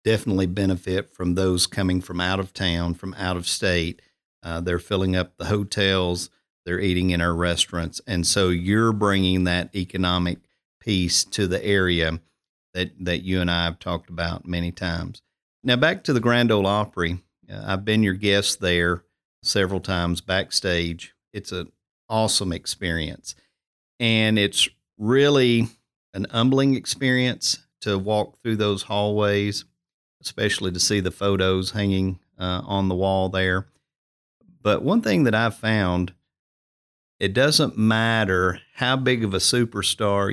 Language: English